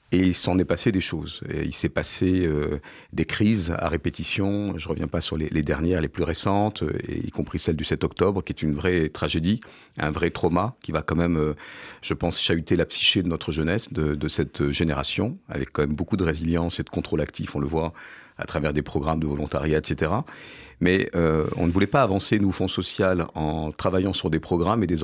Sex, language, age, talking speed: male, French, 50-69, 230 wpm